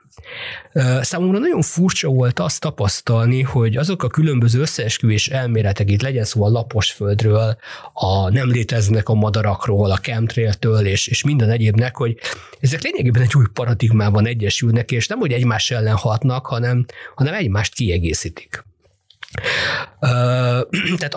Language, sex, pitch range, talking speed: Hungarian, male, 105-125 Hz, 135 wpm